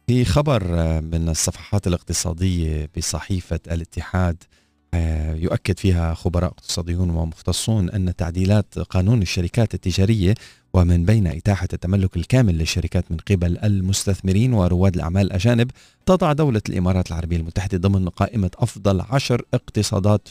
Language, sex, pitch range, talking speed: Arabic, male, 90-110 Hz, 115 wpm